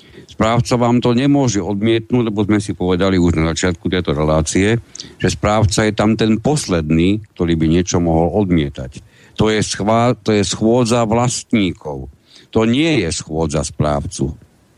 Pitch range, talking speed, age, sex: 90-110 Hz, 150 wpm, 60-79, male